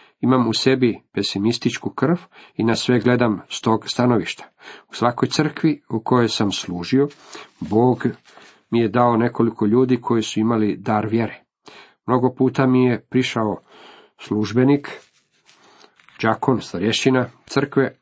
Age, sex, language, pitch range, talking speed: 50-69, male, Croatian, 105-130 Hz, 130 wpm